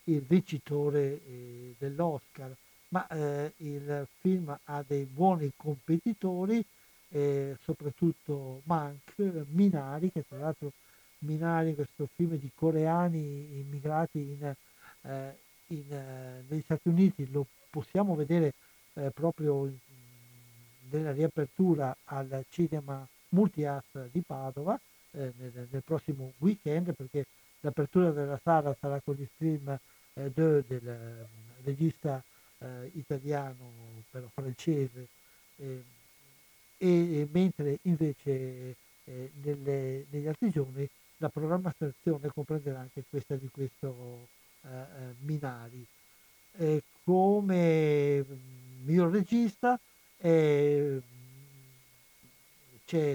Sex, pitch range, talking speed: male, 135-165 Hz, 100 wpm